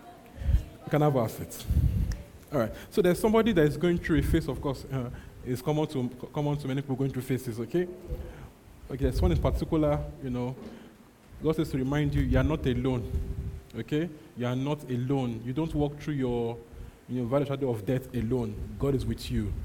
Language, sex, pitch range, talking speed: English, male, 120-150 Hz, 200 wpm